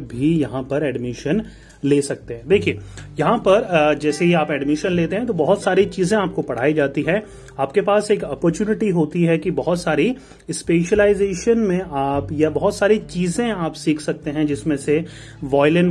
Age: 30-49